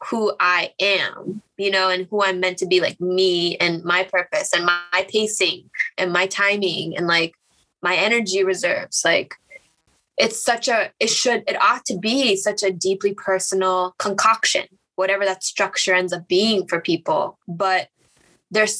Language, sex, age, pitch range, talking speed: English, female, 20-39, 190-245 Hz, 165 wpm